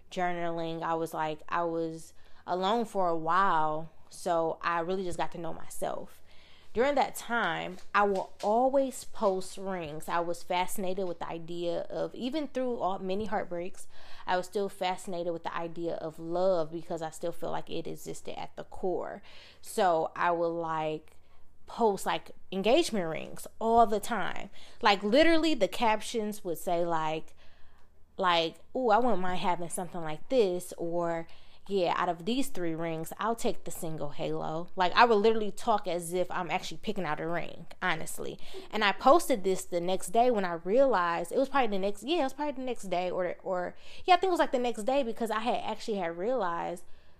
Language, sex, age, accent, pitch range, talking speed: English, female, 20-39, American, 165-210 Hz, 190 wpm